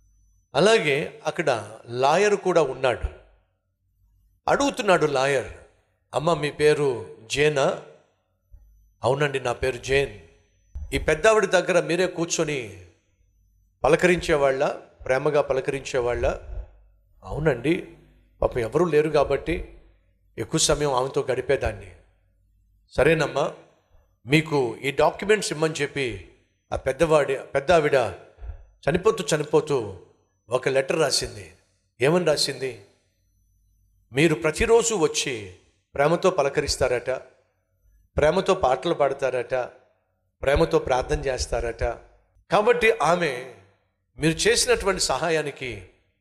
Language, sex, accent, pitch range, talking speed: Telugu, male, native, 95-155 Hz, 85 wpm